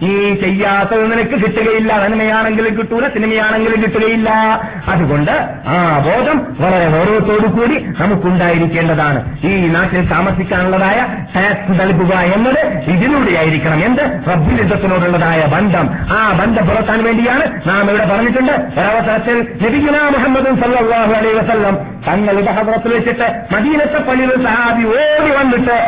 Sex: male